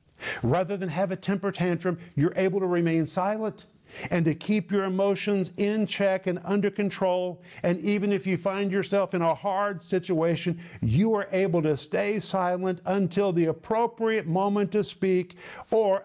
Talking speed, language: 165 wpm, English